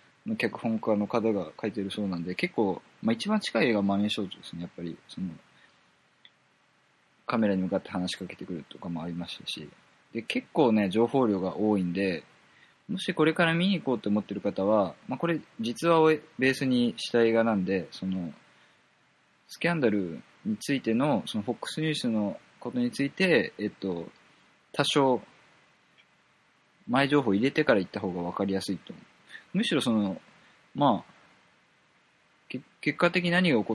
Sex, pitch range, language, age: male, 95-135 Hz, Japanese, 20-39